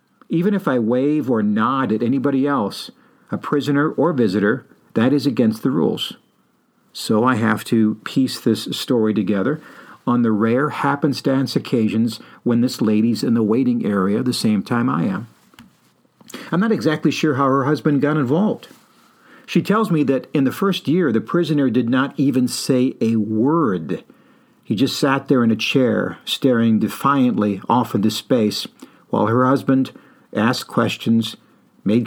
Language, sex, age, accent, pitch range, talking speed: English, male, 50-69, American, 120-170 Hz, 160 wpm